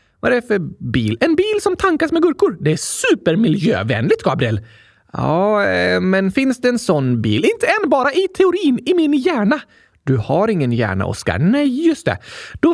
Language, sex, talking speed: Swedish, male, 185 wpm